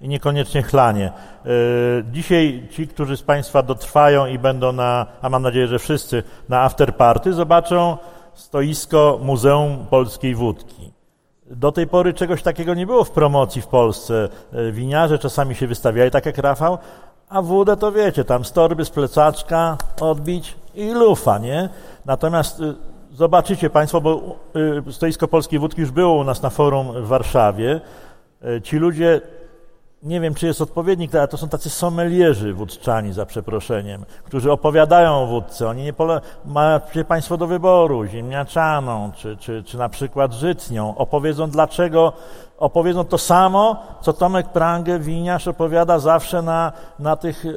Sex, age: male, 50-69